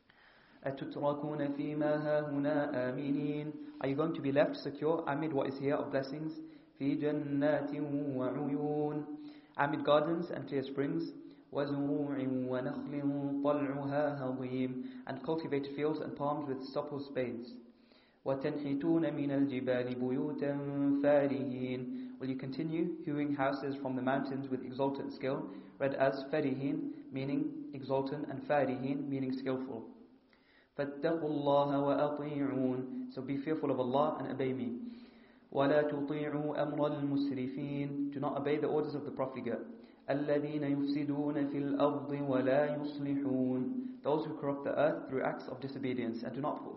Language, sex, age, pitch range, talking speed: English, male, 30-49, 135-150 Hz, 115 wpm